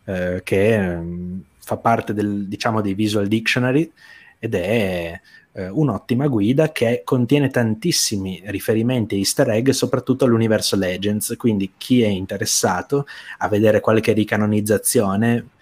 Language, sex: Italian, male